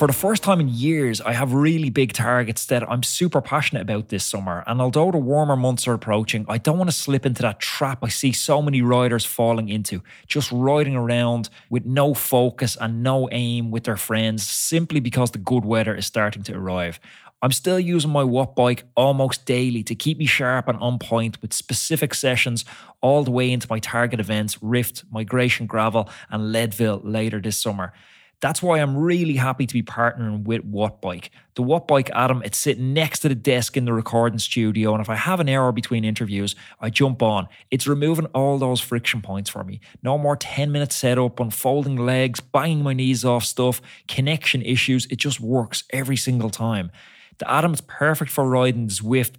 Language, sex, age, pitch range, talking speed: English, male, 20-39, 110-135 Hz, 200 wpm